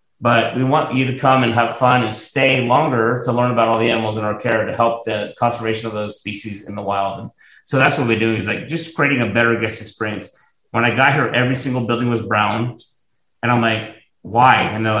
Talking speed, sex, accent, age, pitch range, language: 240 wpm, male, American, 30-49, 110-130 Hz, English